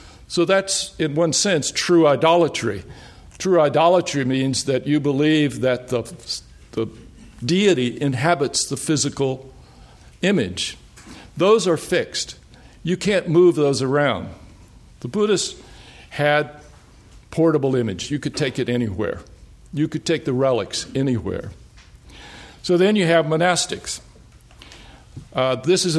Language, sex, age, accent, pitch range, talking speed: English, male, 60-79, American, 120-160 Hz, 120 wpm